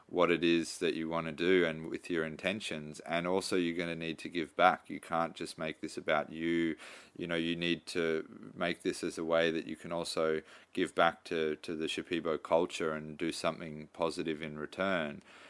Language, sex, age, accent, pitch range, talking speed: English, male, 30-49, Australian, 80-85 Hz, 215 wpm